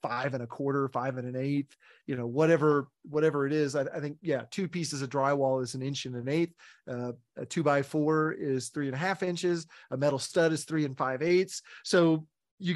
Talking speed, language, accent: 230 wpm, English, American